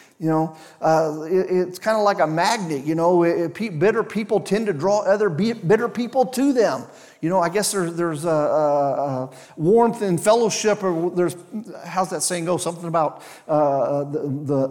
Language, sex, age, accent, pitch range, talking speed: English, male, 40-59, American, 165-220 Hz, 200 wpm